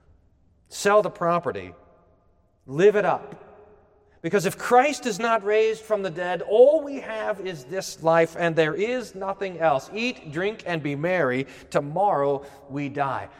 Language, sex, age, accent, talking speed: English, male, 40-59, American, 150 wpm